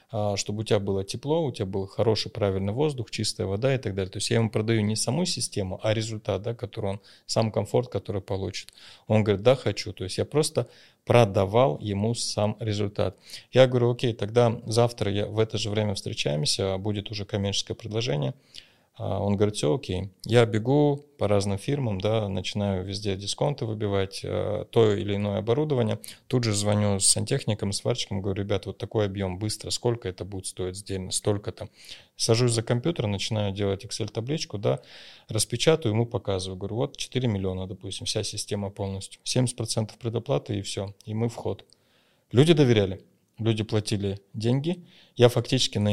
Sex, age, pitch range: male, 20-39, 100-120 Hz